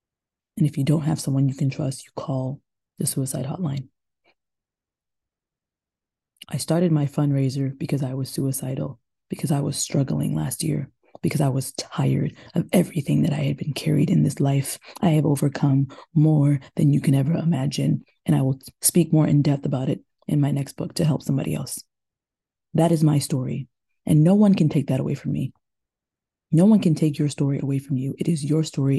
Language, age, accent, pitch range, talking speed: English, 20-39, American, 135-160 Hz, 195 wpm